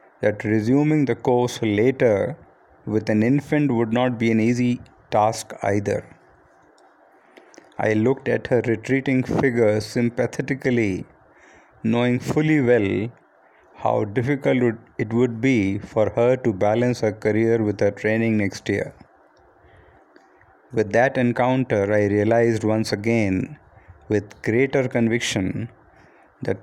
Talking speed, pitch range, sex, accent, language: 115 wpm, 105-130 Hz, male, Indian, English